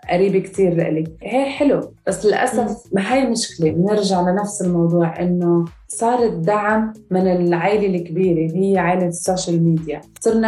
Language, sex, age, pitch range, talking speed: Arabic, female, 20-39, 175-215 Hz, 145 wpm